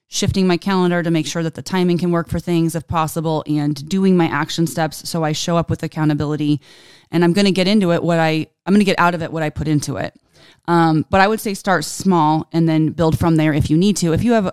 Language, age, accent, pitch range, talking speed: English, 20-39, American, 155-175 Hz, 275 wpm